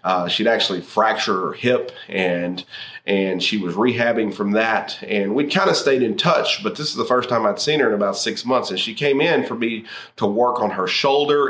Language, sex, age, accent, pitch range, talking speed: English, male, 30-49, American, 100-125 Hz, 230 wpm